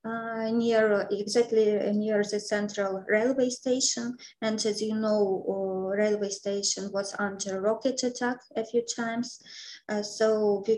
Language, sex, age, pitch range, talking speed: English, female, 20-39, 195-225 Hz, 135 wpm